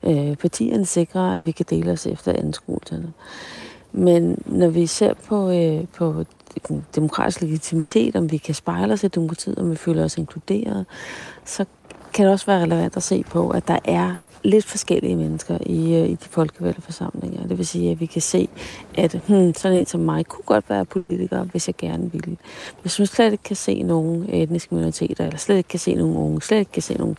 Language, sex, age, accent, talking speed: Danish, female, 30-49, native, 205 wpm